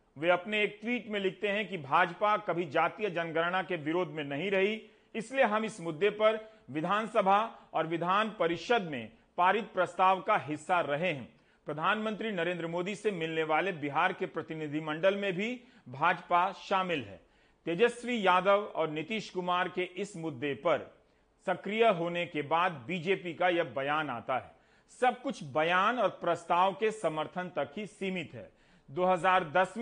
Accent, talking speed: native, 155 wpm